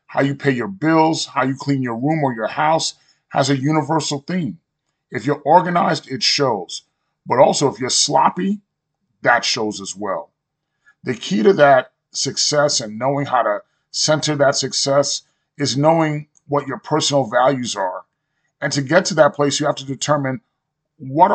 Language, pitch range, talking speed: English, 130-155 Hz, 170 wpm